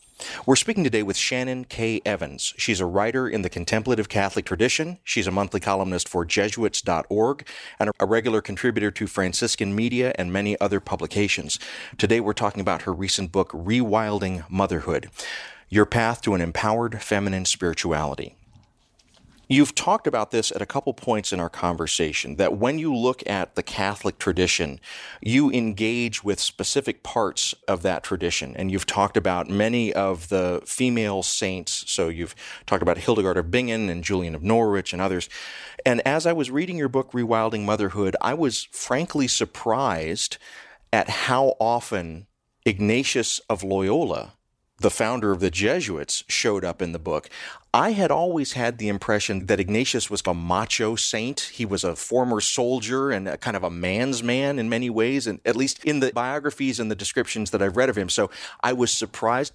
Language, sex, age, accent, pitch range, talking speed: English, male, 40-59, American, 95-120 Hz, 170 wpm